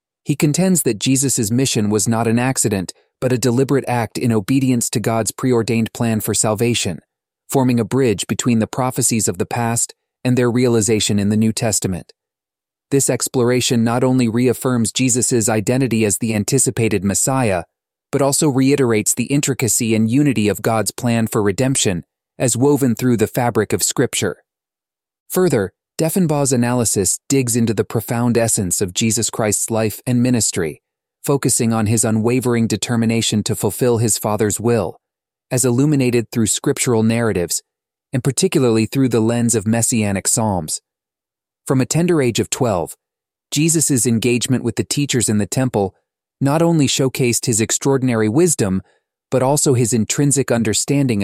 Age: 30-49